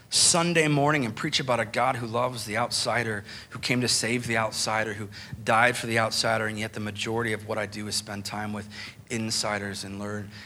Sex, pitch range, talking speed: male, 105-125 Hz, 210 wpm